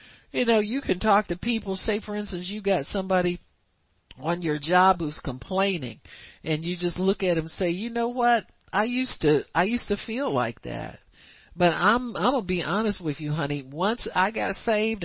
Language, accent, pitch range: English, American, 140-185 Hz